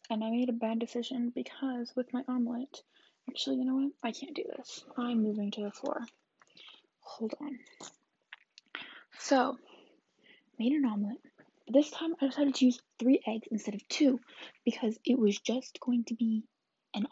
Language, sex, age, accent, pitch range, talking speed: English, female, 10-29, American, 230-295 Hz, 170 wpm